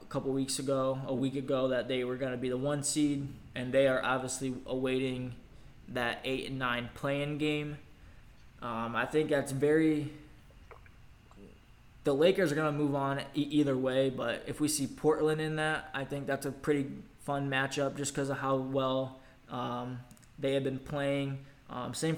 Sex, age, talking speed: male, 20-39, 175 wpm